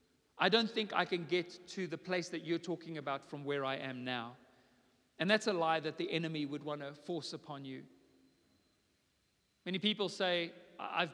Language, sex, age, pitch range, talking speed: English, male, 40-59, 160-210 Hz, 190 wpm